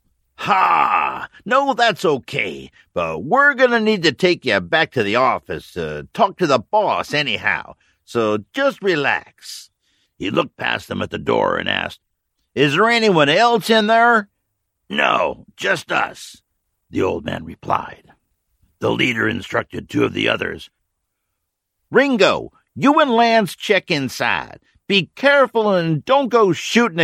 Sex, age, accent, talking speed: male, 50-69, American, 145 wpm